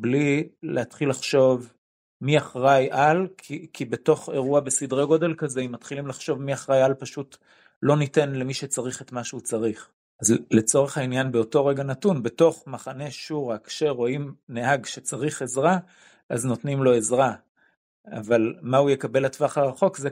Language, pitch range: Hebrew, 125-150 Hz